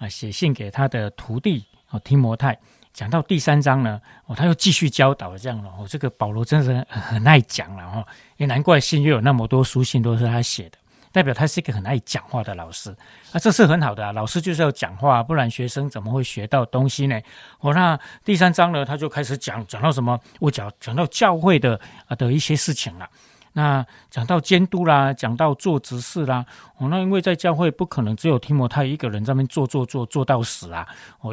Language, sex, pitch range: Chinese, male, 115-155 Hz